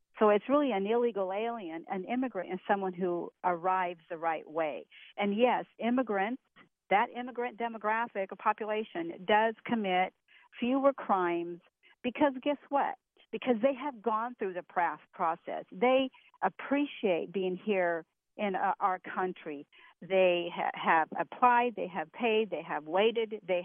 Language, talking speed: English, 135 wpm